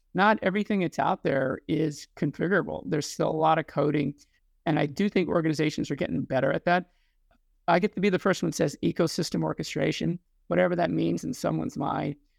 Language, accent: English, American